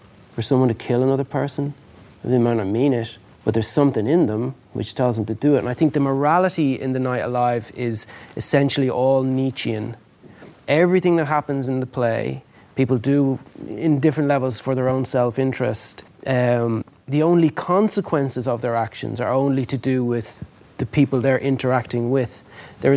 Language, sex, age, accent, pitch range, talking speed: English, male, 30-49, Irish, 120-145 Hz, 180 wpm